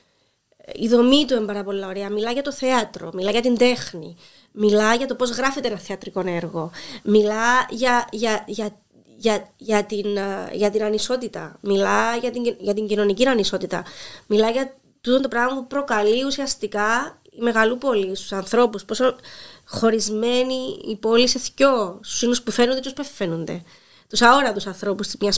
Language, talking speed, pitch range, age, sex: Greek, 165 wpm, 210-255 Hz, 20-39, female